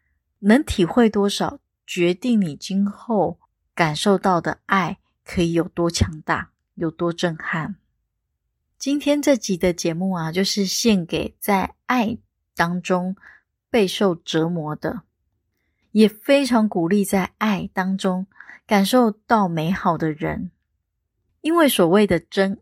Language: Chinese